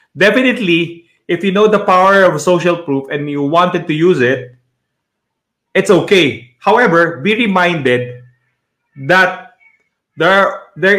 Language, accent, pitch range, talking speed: English, Filipino, 150-195 Hz, 125 wpm